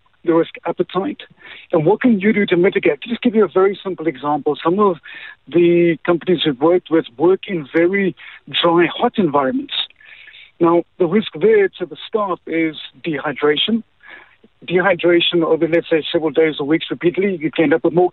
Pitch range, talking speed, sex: 160-195 Hz, 180 wpm, male